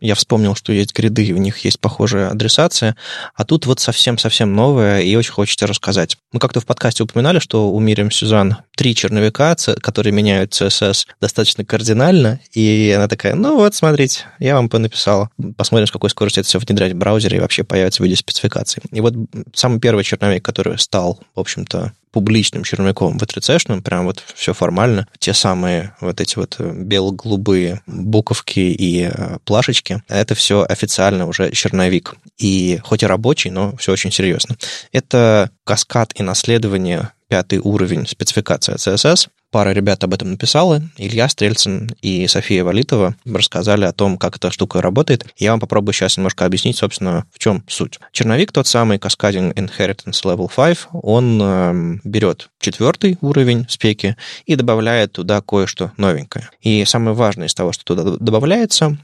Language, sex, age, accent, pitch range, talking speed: Russian, male, 20-39, native, 95-120 Hz, 165 wpm